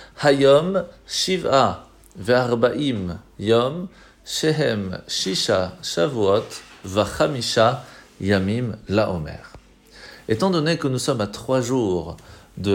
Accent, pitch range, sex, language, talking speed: French, 105-140 Hz, male, French, 100 wpm